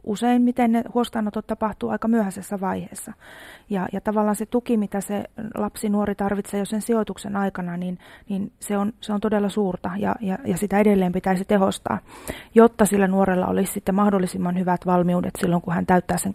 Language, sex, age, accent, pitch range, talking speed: Finnish, female, 30-49, native, 190-220 Hz, 185 wpm